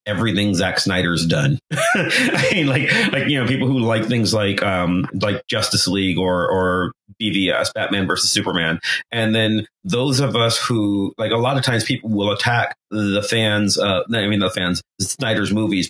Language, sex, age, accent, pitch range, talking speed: English, male, 30-49, American, 95-125 Hz, 180 wpm